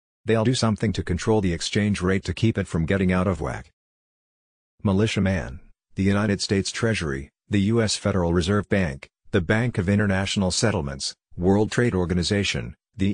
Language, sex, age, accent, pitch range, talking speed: English, male, 50-69, American, 90-105 Hz, 160 wpm